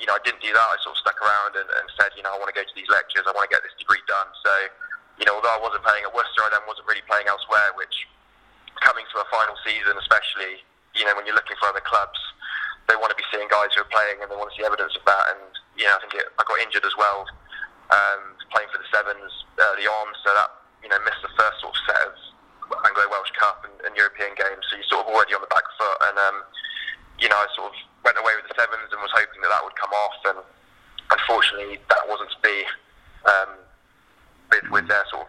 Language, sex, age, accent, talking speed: English, male, 10-29, British, 260 wpm